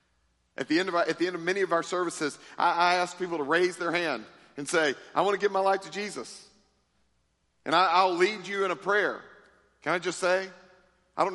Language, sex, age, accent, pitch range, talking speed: English, male, 40-59, American, 175-245 Hz, 240 wpm